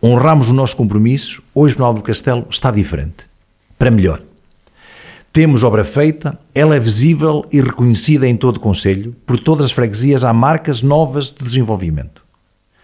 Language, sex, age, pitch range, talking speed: Portuguese, male, 50-69, 100-135 Hz, 155 wpm